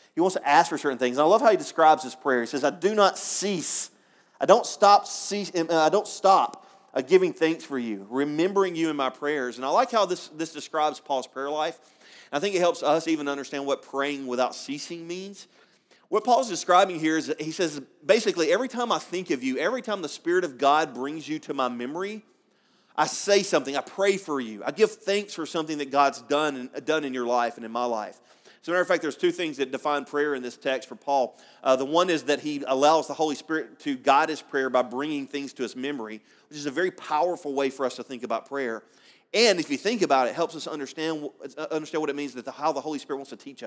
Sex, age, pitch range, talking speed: male, 30-49, 140-180 Hz, 250 wpm